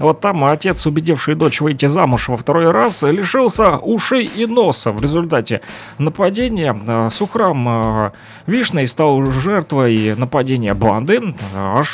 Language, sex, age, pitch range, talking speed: Russian, male, 30-49, 120-170 Hz, 120 wpm